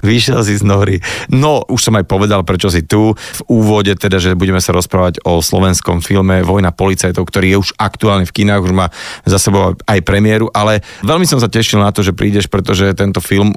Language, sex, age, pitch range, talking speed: Slovak, male, 30-49, 95-110 Hz, 210 wpm